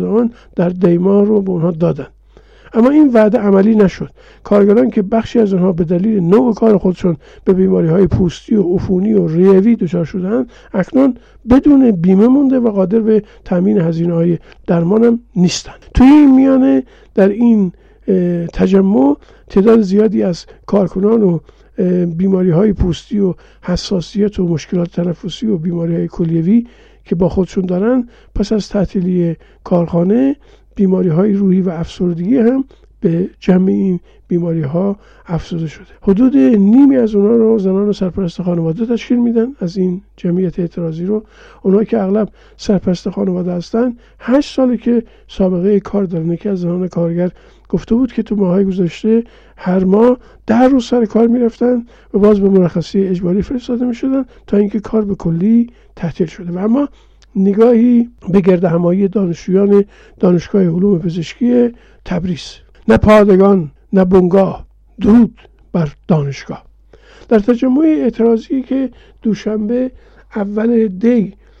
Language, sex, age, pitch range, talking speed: Persian, male, 50-69, 180-230 Hz, 140 wpm